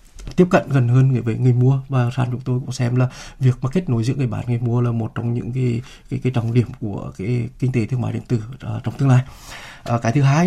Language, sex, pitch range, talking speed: Vietnamese, male, 125-150 Hz, 265 wpm